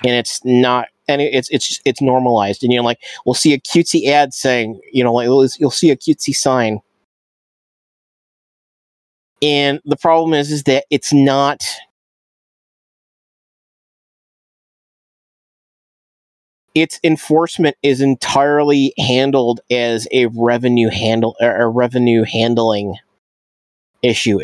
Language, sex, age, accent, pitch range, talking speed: English, male, 30-49, American, 120-150 Hz, 120 wpm